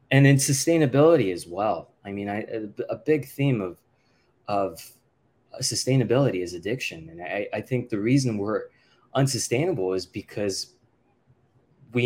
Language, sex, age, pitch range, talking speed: English, male, 20-39, 110-130 Hz, 140 wpm